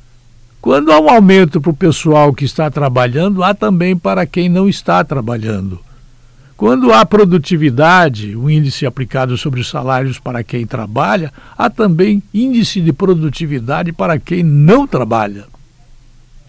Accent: Brazilian